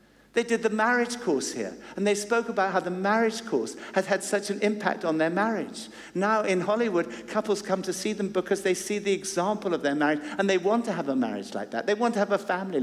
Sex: male